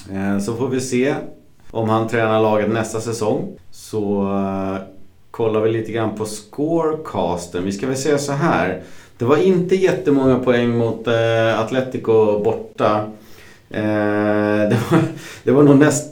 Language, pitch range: Swedish, 105-130 Hz